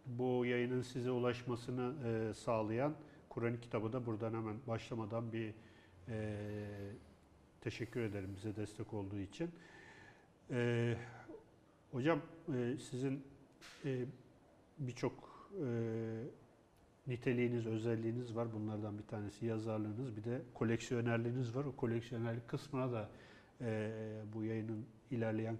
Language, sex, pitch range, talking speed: Turkish, male, 110-130 Hz, 90 wpm